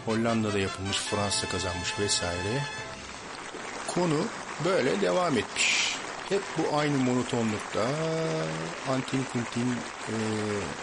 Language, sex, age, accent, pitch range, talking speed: Turkish, male, 50-69, native, 95-125 Hz, 90 wpm